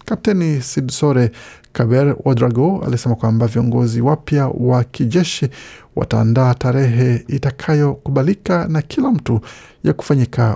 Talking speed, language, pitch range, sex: 100 wpm, Swahili, 120-145 Hz, male